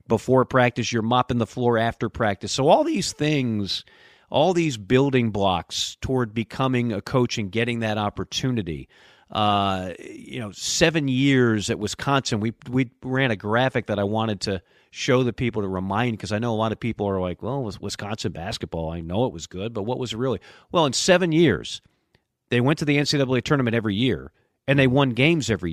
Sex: male